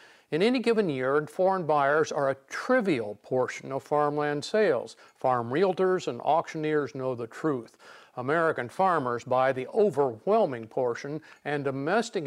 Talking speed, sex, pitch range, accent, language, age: 135 wpm, male, 135-170 Hz, American, English, 50-69